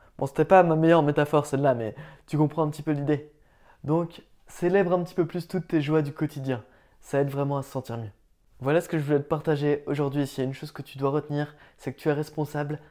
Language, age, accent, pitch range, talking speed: French, 20-39, French, 140-165 Hz, 250 wpm